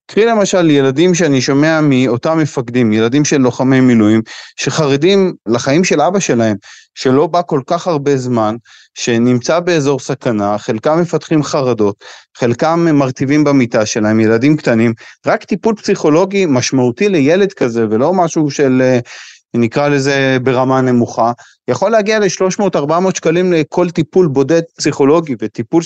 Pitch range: 125-160 Hz